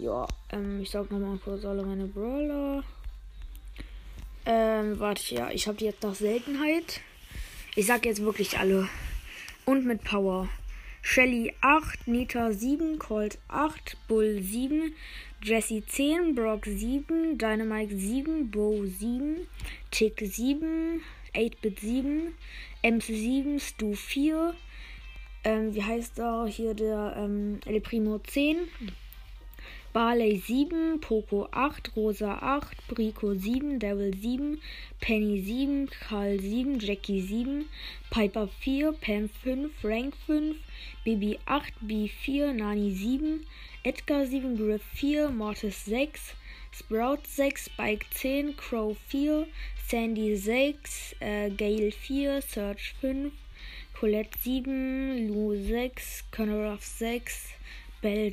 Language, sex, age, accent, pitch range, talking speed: German, female, 20-39, German, 210-275 Hz, 115 wpm